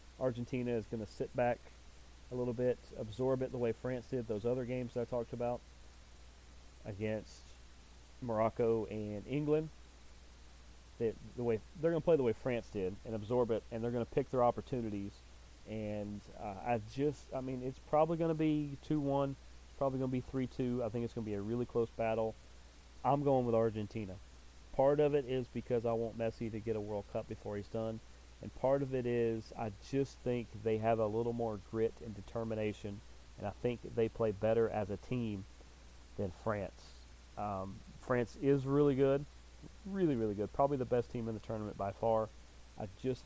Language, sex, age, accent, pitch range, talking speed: English, male, 30-49, American, 100-125 Hz, 185 wpm